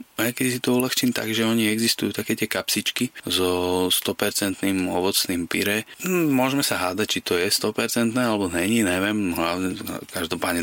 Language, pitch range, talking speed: Slovak, 95-120 Hz, 145 wpm